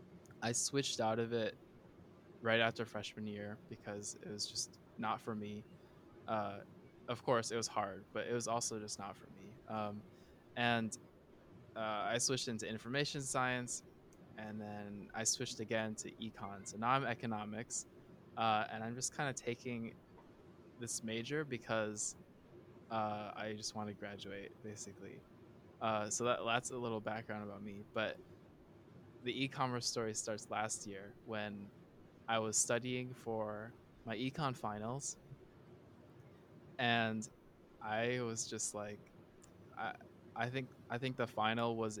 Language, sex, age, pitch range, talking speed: English, male, 20-39, 105-120 Hz, 150 wpm